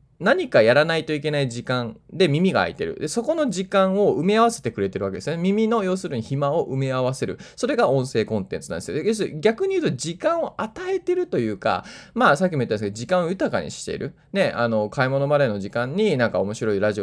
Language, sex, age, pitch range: Japanese, male, 20-39, 110-170 Hz